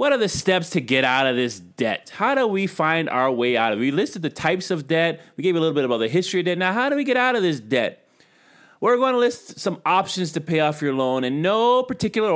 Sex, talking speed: male, 285 wpm